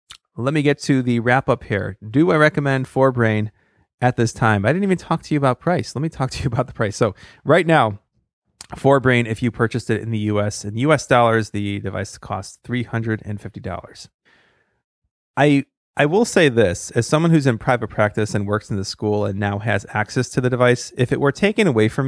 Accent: American